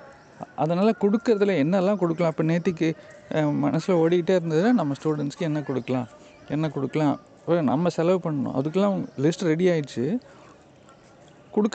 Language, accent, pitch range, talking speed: Tamil, native, 150-190 Hz, 115 wpm